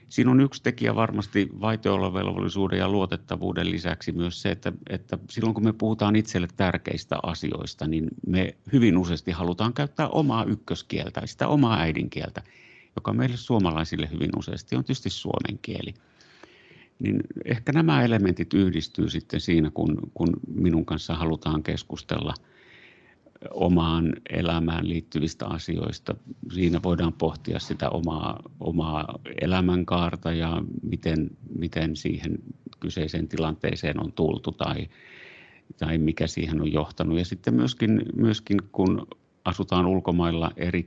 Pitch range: 80-110 Hz